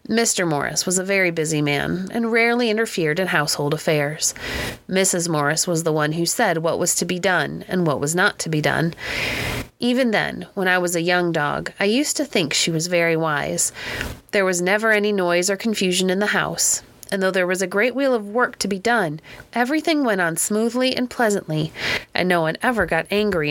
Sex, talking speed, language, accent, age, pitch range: female, 210 wpm, English, American, 30-49, 165-215 Hz